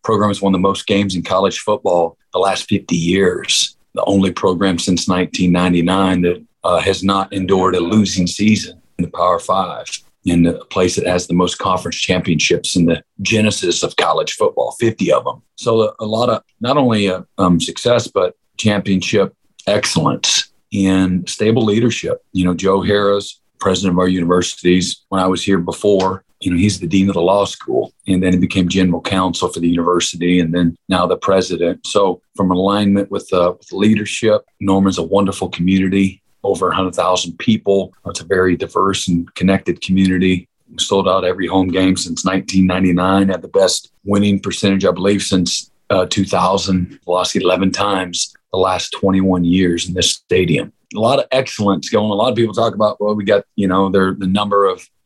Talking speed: 185 wpm